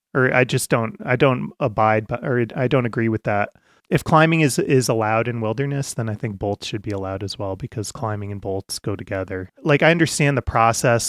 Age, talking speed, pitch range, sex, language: 30-49, 220 wpm, 105-125 Hz, male, English